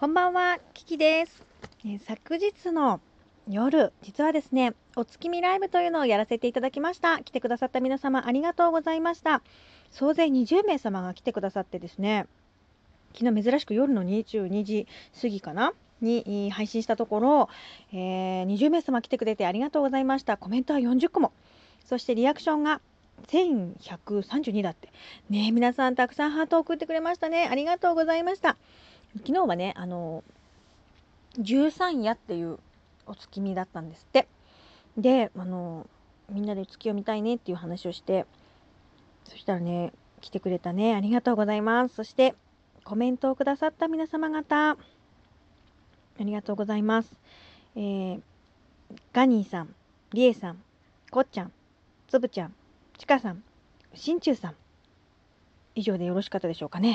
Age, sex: 40-59, female